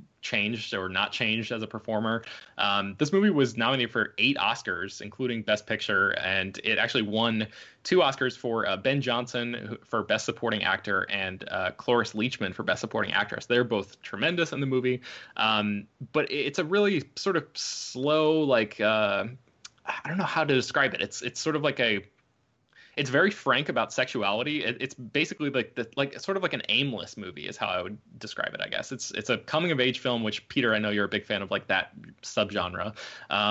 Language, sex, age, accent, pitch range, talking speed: English, male, 20-39, American, 110-130 Hz, 200 wpm